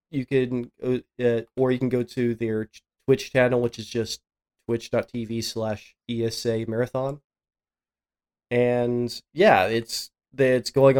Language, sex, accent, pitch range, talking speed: English, male, American, 115-130 Hz, 115 wpm